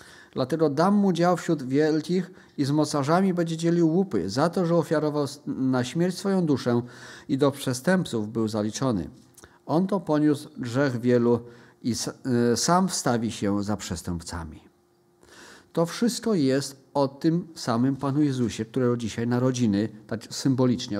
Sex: male